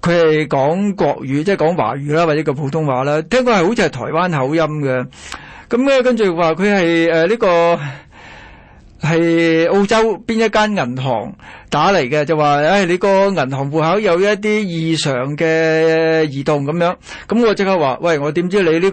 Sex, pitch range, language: male, 150-200 Hz, Chinese